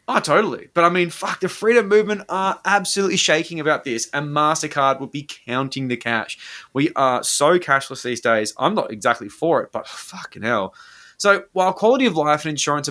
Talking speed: 195 wpm